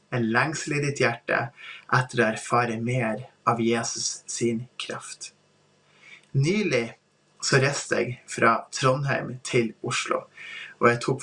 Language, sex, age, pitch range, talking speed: English, male, 20-39, 125-170 Hz, 110 wpm